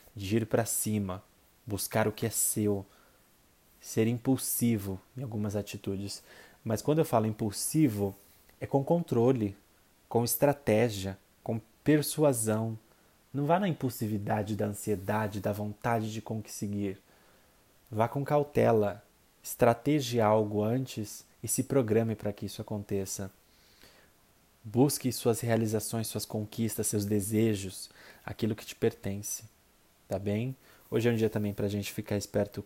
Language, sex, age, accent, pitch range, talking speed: Portuguese, male, 20-39, Brazilian, 100-115 Hz, 130 wpm